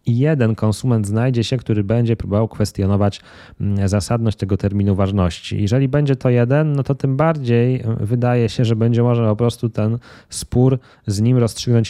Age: 20-39